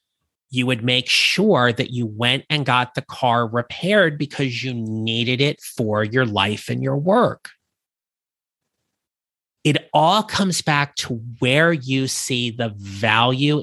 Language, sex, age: English, male, 30-49